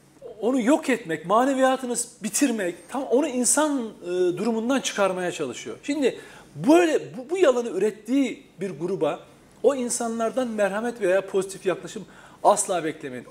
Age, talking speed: 40-59, 120 wpm